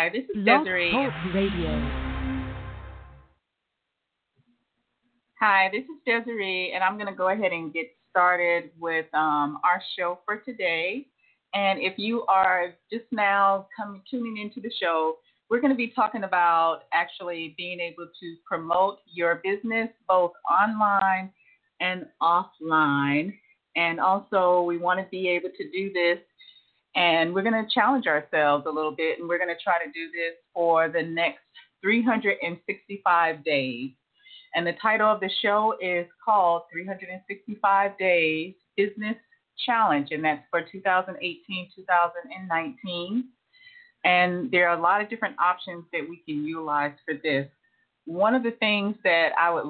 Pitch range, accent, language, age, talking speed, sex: 165-205 Hz, American, English, 30-49, 145 wpm, female